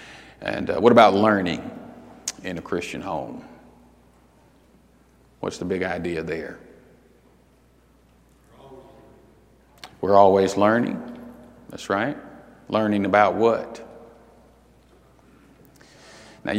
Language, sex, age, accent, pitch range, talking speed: English, male, 50-69, American, 100-125 Hz, 85 wpm